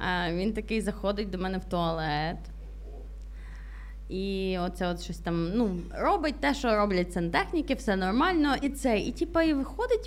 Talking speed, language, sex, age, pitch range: 155 wpm, Ukrainian, female, 20-39, 190-280 Hz